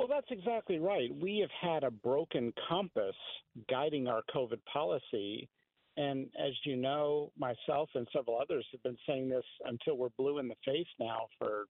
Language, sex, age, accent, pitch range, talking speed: English, male, 50-69, American, 125-155 Hz, 175 wpm